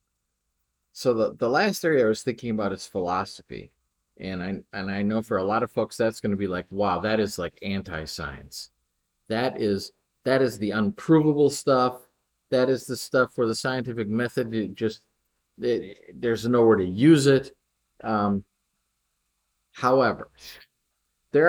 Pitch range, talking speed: 100-130 Hz, 160 wpm